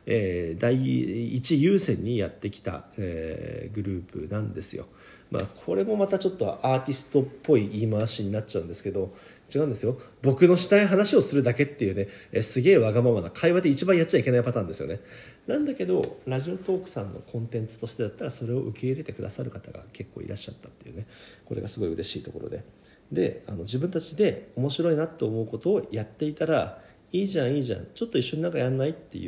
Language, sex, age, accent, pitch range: Japanese, male, 40-59, native, 105-155 Hz